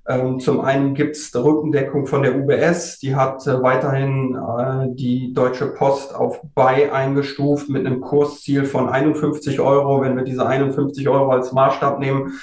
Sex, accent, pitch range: male, German, 130-145 Hz